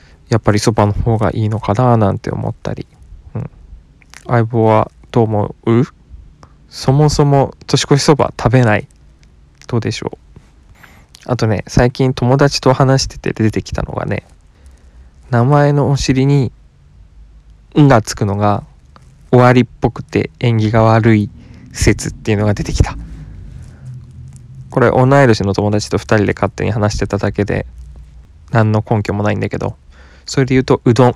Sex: male